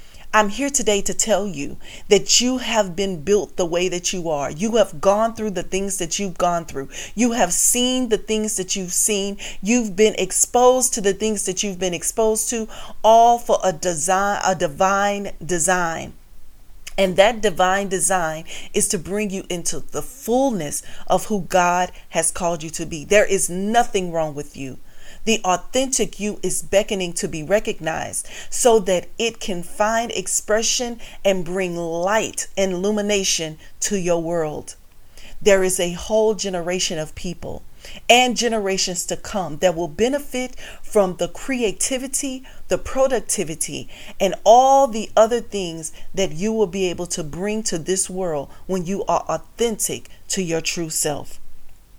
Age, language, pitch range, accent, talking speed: 40-59, English, 175-215 Hz, American, 165 wpm